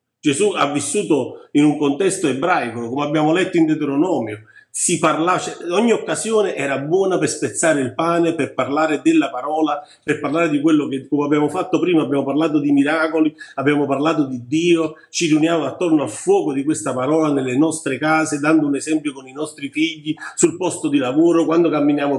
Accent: native